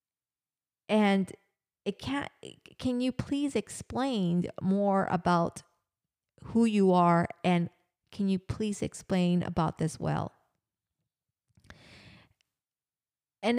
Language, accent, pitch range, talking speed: English, American, 170-200 Hz, 95 wpm